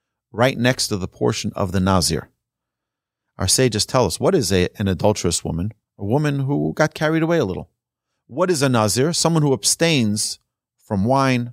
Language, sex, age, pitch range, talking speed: English, male, 30-49, 115-155 Hz, 175 wpm